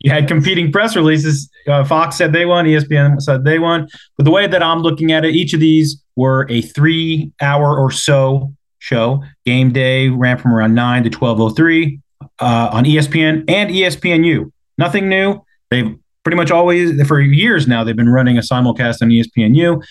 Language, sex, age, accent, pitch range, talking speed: English, male, 30-49, American, 120-155 Hz, 185 wpm